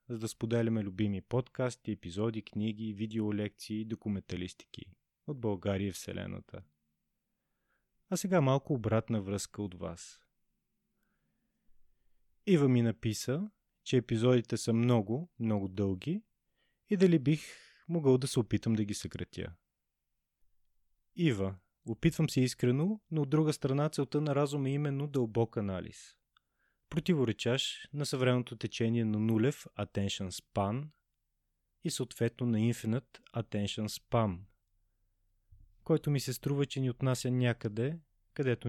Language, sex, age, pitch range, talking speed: Bulgarian, male, 30-49, 100-130 Hz, 120 wpm